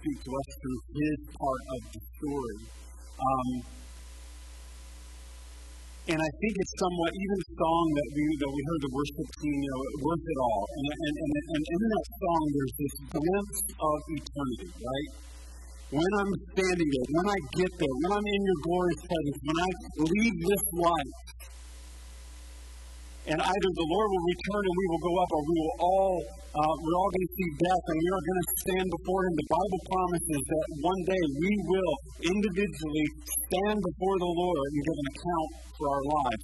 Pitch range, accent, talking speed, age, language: 140-185 Hz, American, 185 wpm, 50-69, English